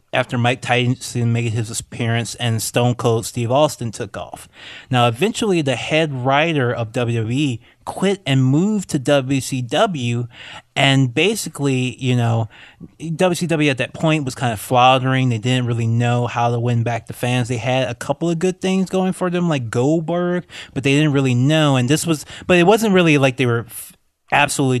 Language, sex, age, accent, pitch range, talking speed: English, male, 20-39, American, 120-150 Hz, 180 wpm